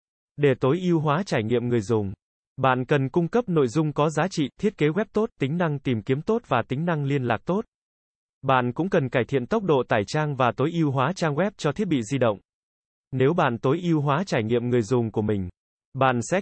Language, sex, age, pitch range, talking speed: Vietnamese, male, 20-39, 120-155 Hz, 240 wpm